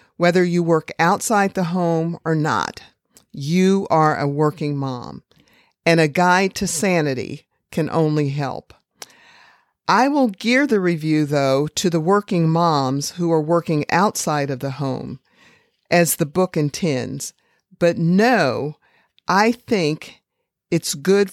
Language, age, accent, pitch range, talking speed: English, 50-69, American, 150-180 Hz, 135 wpm